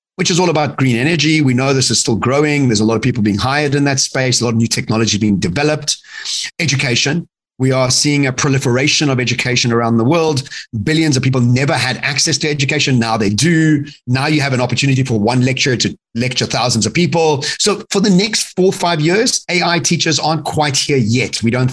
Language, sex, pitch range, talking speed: English, male, 130-160 Hz, 220 wpm